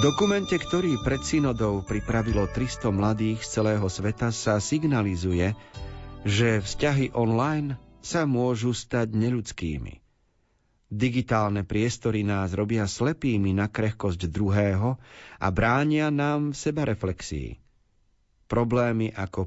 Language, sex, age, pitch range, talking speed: Slovak, male, 40-59, 105-130 Hz, 100 wpm